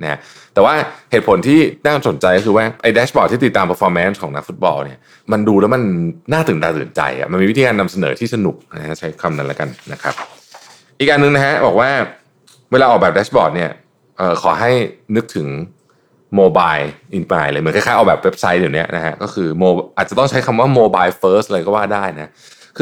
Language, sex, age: Thai, male, 20-39